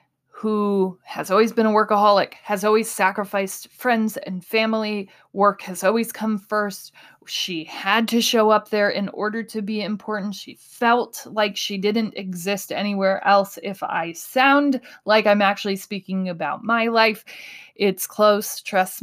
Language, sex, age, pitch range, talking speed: English, female, 20-39, 180-215 Hz, 155 wpm